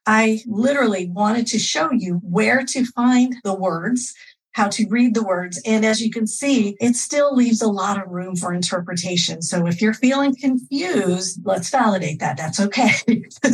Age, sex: 50-69, female